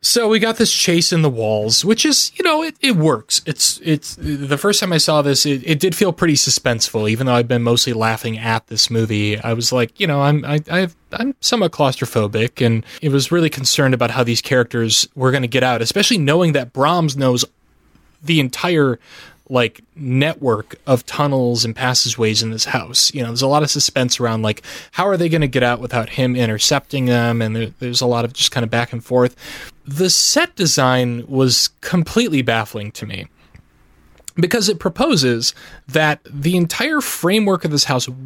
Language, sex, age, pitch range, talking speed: English, male, 20-39, 120-165 Hz, 200 wpm